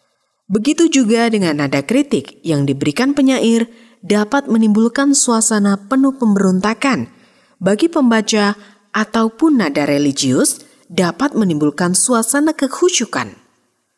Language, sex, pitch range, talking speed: Indonesian, female, 185-280 Hz, 95 wpm